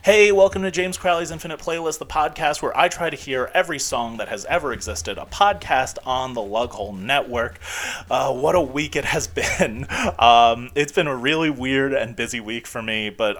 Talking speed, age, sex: 200 wpm, 30-49, male